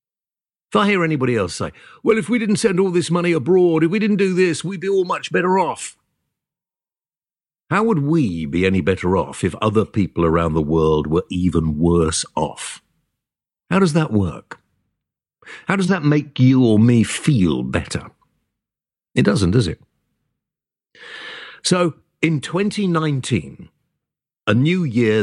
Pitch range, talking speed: 95-160 Hz, 155 wpm